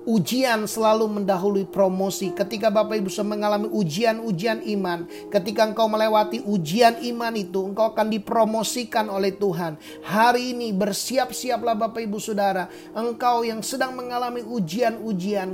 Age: 30-49